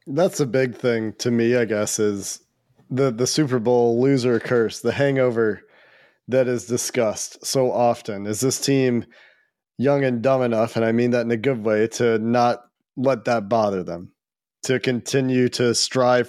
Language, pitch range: English, 115-140 Hz